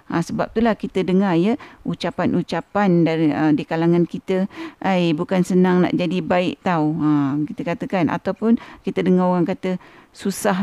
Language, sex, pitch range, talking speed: Malay, female, 180-230 Hz, 160 wpm